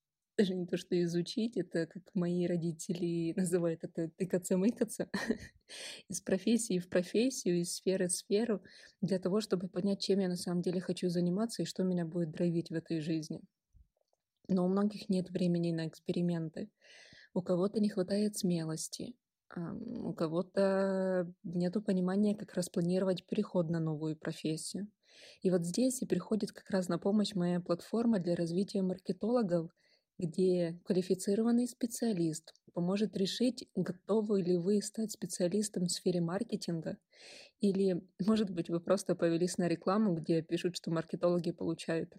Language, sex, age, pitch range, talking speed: Russian, female, 20-39, 175-205 Hz, 145 wpm